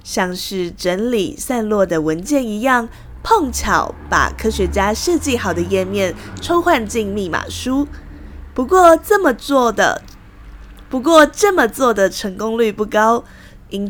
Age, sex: 20-39, female